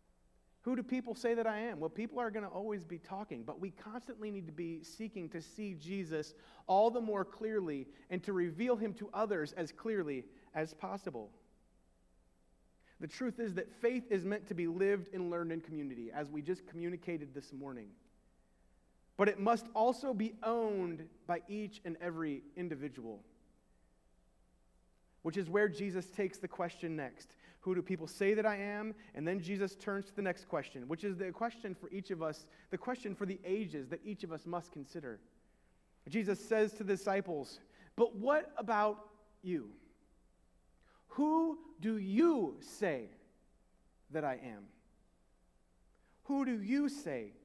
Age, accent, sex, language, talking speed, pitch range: 30-49, American, male, English, 165 wpm, 155-215 Hz